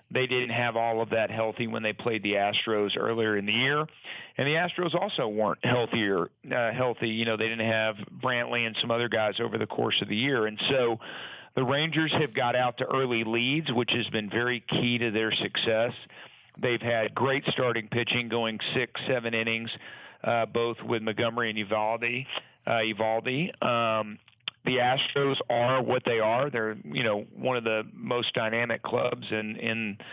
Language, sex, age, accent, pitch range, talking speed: English, male, 50-69, American, 110-125 Hz, 185 wpm